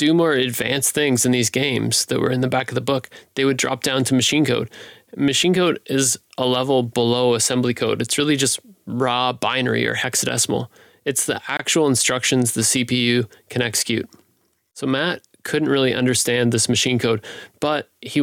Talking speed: 180 wpm